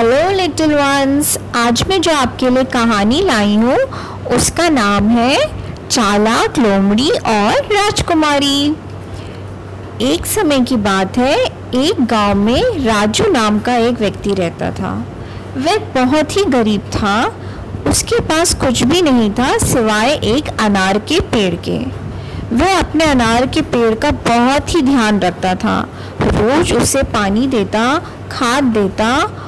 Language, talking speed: Hindi, 135 wpm